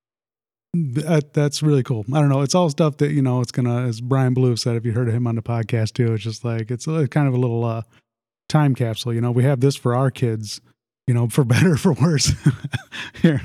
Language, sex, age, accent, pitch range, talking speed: English, male, 30-49, American, 120-150 Hz, 235 wpm